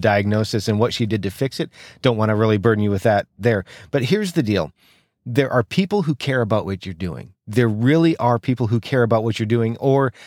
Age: 40-59